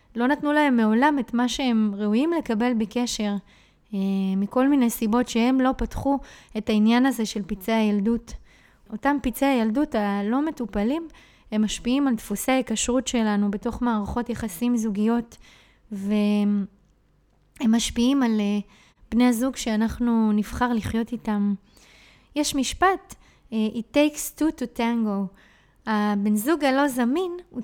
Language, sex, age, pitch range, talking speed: Hebrew, female, 20-39, 210-255 Hz, 125 wpm